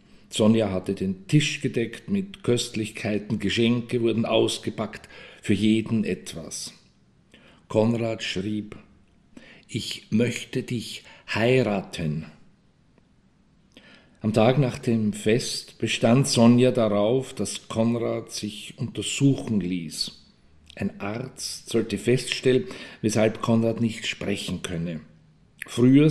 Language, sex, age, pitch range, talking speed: German, male, 50-69, 100-130 Hz, 95 wpm